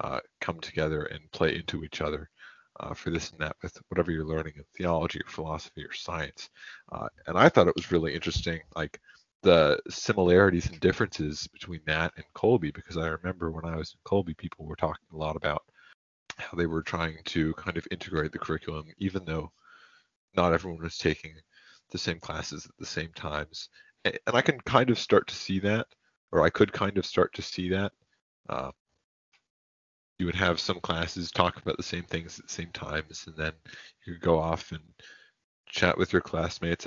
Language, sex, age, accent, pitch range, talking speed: English, male, 30-49, American, 80-90 Hz, 190 wpm